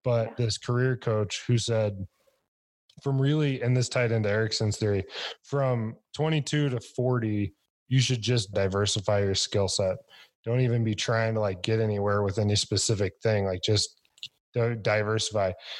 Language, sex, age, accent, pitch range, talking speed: English, male, 20-39, American, 105-125 Hz, 150 wpm